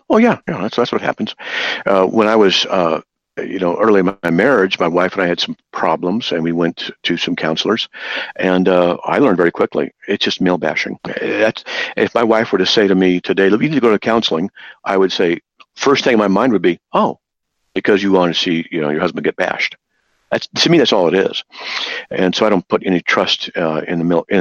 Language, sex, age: English, male, 50-69